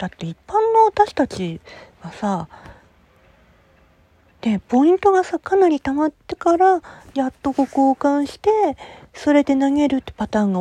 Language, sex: Japanese, female